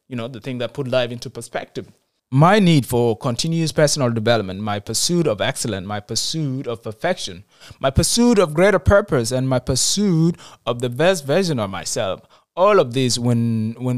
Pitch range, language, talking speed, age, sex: 115-150 Hz, English, 180 wpm, 20-39, male